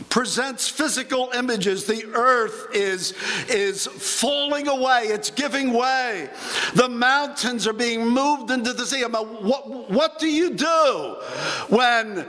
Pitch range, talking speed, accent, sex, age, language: 220-275 Hz, 130 wpm, American, male, 50-69, English